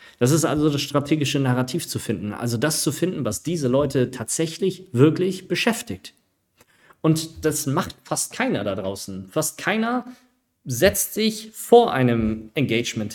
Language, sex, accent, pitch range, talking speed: German, male, German, 120-160 Hz, 145 wpm